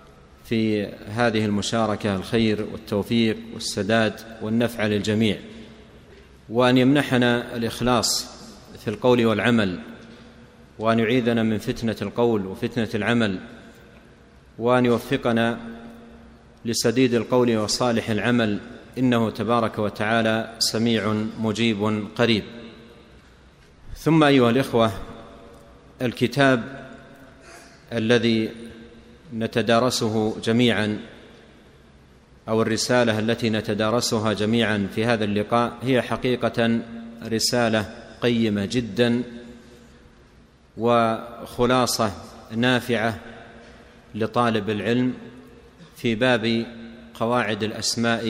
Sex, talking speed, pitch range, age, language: male, 75 wpm, 110-120 Hz, 40-59, Arabic